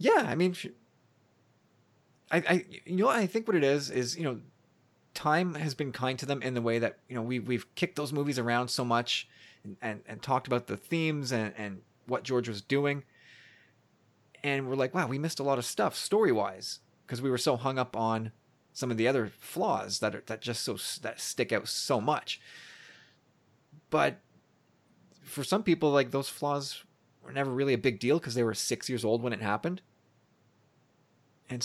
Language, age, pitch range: English, 30-49, 125-155 Hz